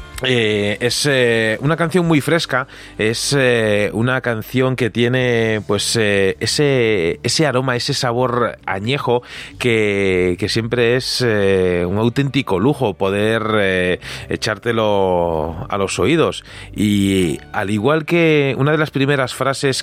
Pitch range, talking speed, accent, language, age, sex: 100-130 Hz, 135 wpm, Spanish, Spanish, 30-49, male